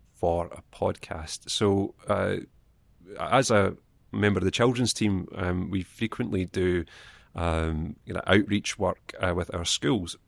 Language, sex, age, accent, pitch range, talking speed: English, male, 30-49, British, 90-105 Hz, 135 wpm